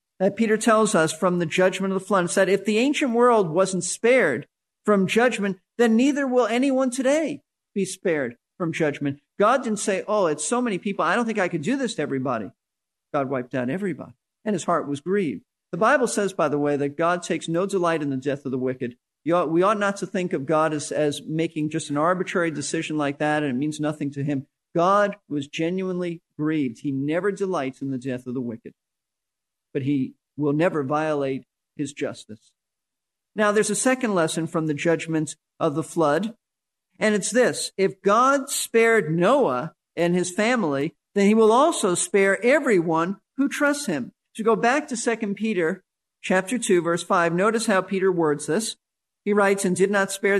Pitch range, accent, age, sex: 160-215 Hz, American, 50-69, male